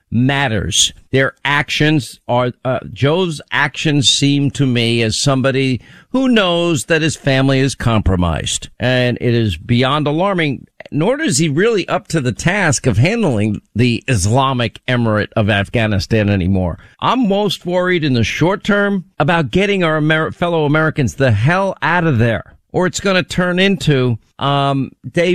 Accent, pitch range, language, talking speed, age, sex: American, 125-180 Hz, English, 155 wpm, 50-69, male